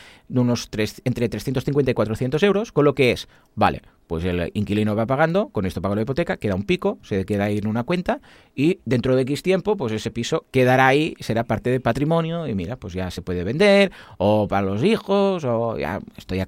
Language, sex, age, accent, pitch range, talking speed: Spanish, male, 30-49, Spanish, 100-150 Hz, 220 wpm